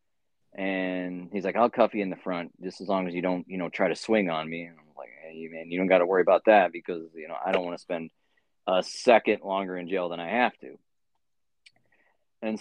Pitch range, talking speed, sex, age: 90-115 Hz, 245 wpm, male, 30-49